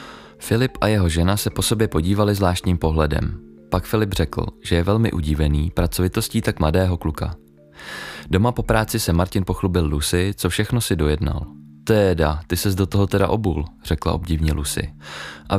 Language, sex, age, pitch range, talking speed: Czech, male, 20-39, 80-105 Hz, 165 wpm